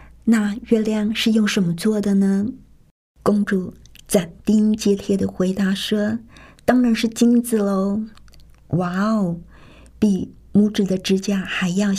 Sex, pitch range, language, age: female, 190-220 Hz, Chinese, 50-69